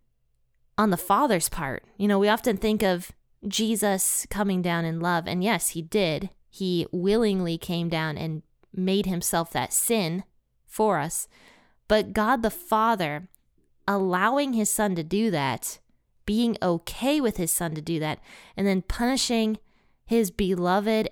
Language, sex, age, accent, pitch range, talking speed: English, female, 20-39, American, 165-205 Hz, 150 wpm